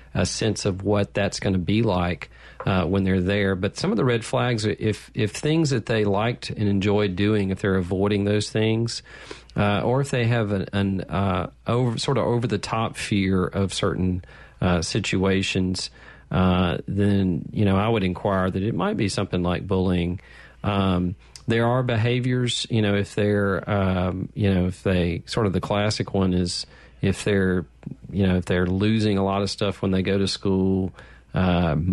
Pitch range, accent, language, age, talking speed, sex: 90-105 Hz, American, English, 40-59, 190 wpm, male